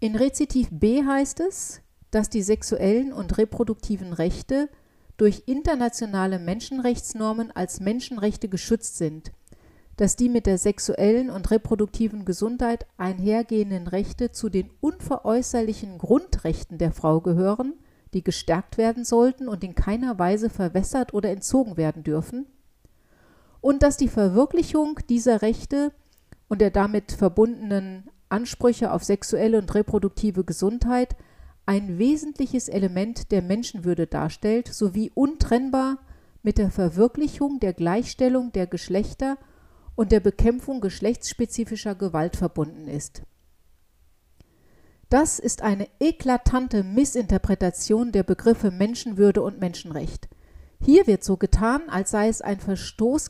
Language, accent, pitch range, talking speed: German, German, 190-245 Hz, 120 wpm